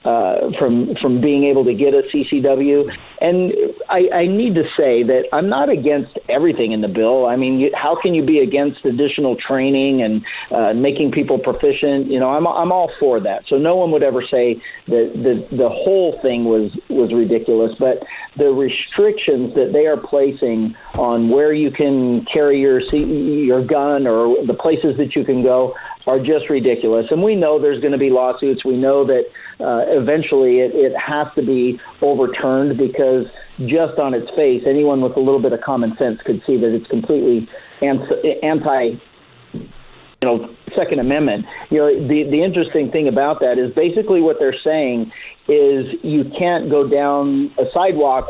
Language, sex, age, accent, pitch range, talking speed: English, male, 50-69, American, 130-170 Hz, 185 wpm